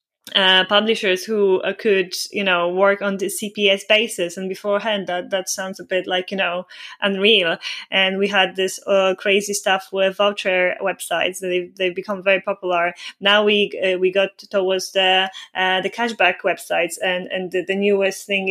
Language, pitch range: German, 185-210 Hz